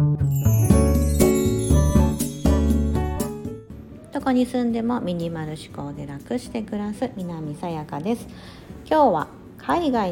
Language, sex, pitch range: Japanese, female, 150-215 Hz